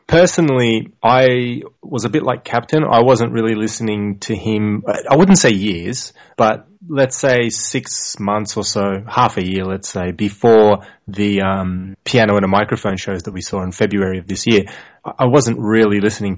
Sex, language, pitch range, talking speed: male, English, 100-125 Hz, 180 wpm